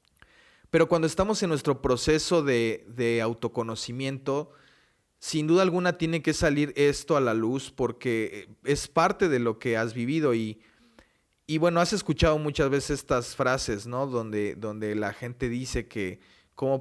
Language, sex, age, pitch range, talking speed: Spanish, male, 30-49, 115-145 Hz, 155 wpm